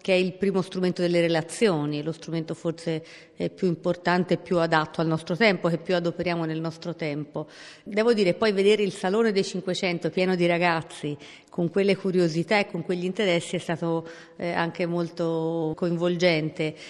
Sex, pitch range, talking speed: female, 170-195 Hz, 165 wpm